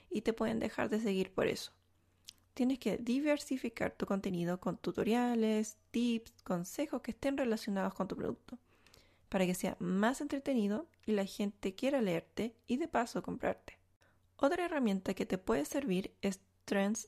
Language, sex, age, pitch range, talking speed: Spanish, female, 20-39, 195-245 Hz, 160 wpm